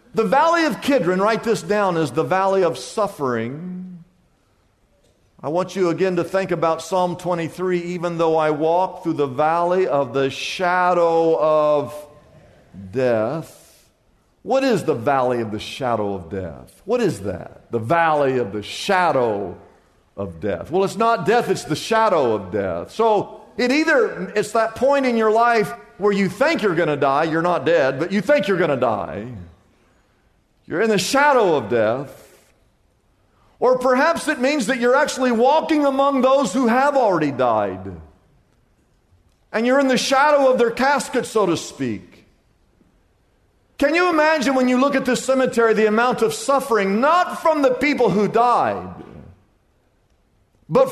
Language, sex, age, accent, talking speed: English, male, 50-69, American, 165 wpm